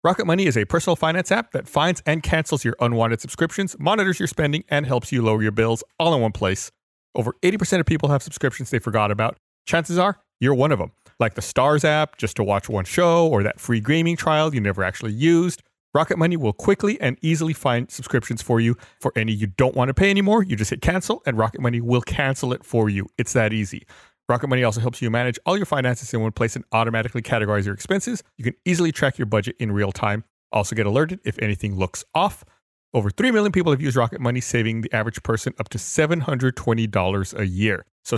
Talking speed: 225 wpm